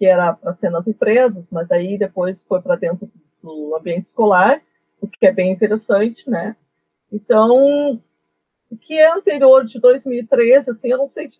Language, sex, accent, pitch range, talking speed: Portuguese, female, Brazilian, 200-255 Hz, 175 wpm